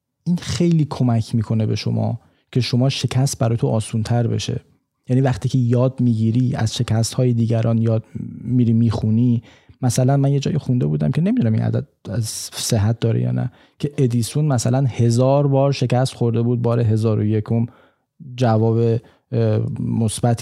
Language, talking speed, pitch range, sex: Persian, 160 wpm, 115-140 Hz, male